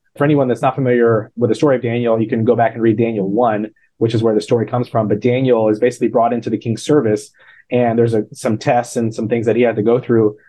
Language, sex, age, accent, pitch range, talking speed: English, male, 30-49, American, 110-130 Hz, 270 wpm